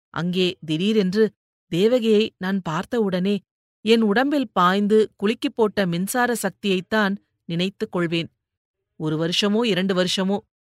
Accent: native